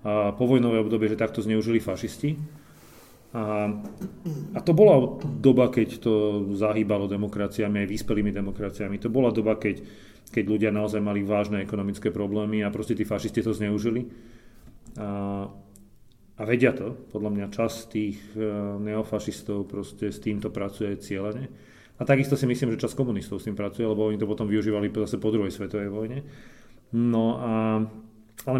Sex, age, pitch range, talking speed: male, 40-59, 105-120 Hz, 155 wpm